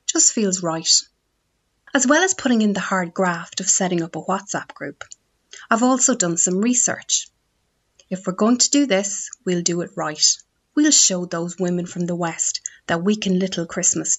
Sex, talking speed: female, 185 wpm